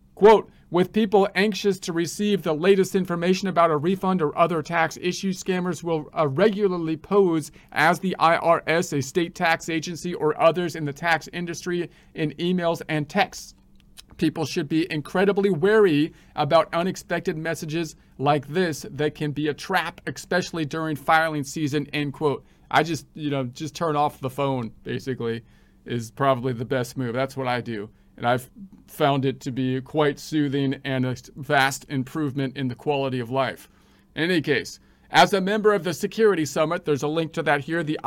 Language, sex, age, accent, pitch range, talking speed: English, male, 40-59, American, 145-175 Hz, 175 wpm